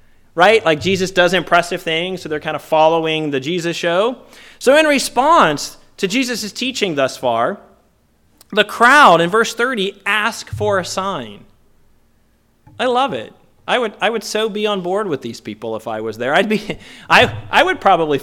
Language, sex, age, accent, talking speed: English, male, 30-49, American, 180 wpm